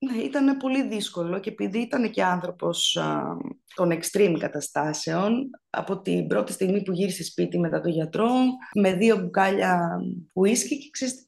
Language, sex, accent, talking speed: Greek, female, native, 145 wpm